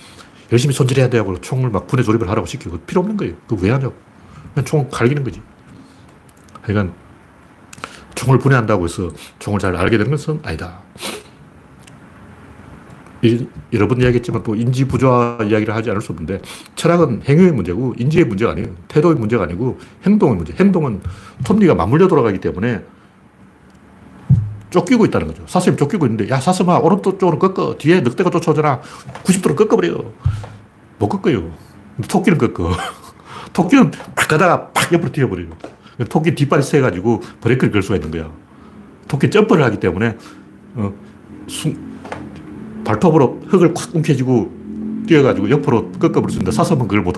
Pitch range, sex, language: 105-165 Hz, male, Korean